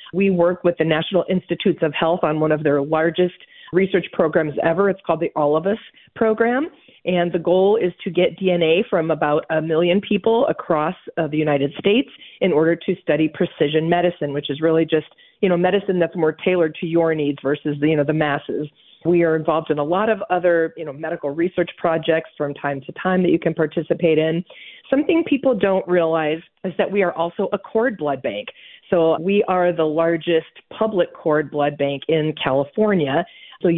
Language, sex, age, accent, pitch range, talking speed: English, female, 40-59, American, 155-185 Hz, 195 wpm